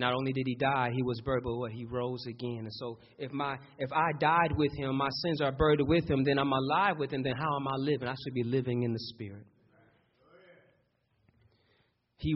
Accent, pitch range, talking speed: American, 125-160 Hz, 225 wpm